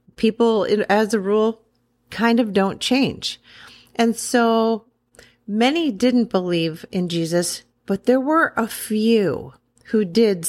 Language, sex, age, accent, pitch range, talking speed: English, female, 40-59, American, 170-230 Hz, 125 wpm